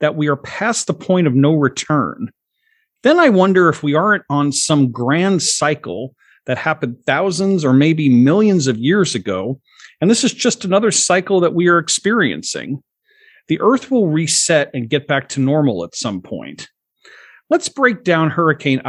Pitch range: 135-200 Hz